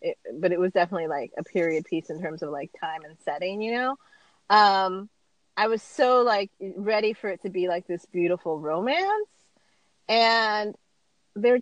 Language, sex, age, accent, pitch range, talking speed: English, female, 30-49, American, 195-295 Hz, 170 wpm